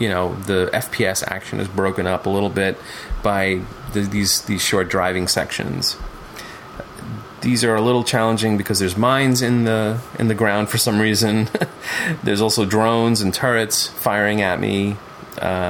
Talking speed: 165 wpm